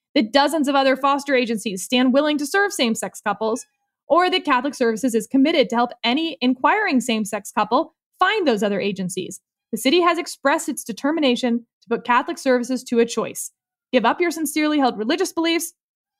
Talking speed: 180 wpm